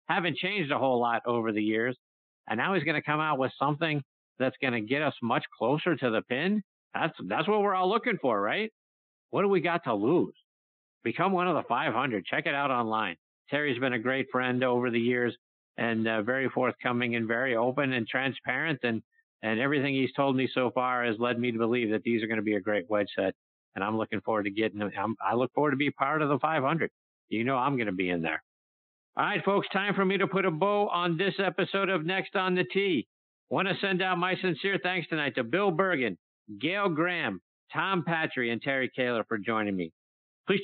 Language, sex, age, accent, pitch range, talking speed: English, male, 50-69, American, 120-180 Hz, 230 wpm